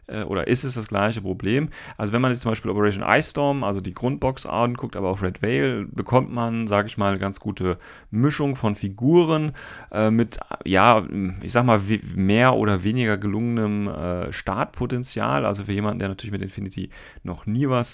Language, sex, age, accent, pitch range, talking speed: German, male, 30-49, German, 95-115 Hz, 185 wpm